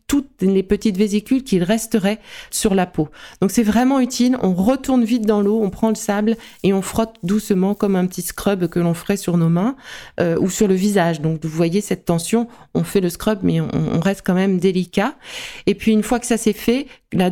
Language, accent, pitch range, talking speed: French, French, 175-220 Hz, 230 wpm